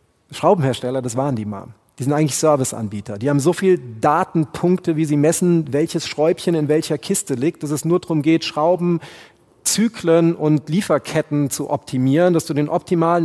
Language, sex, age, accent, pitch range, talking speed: German, male, 40-59, German, 140-175 Hz, 170 wpm